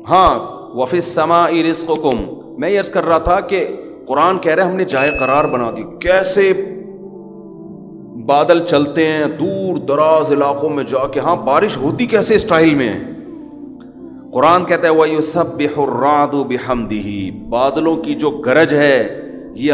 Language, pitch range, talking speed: Urdu, 165-195 Hz, 145 wpm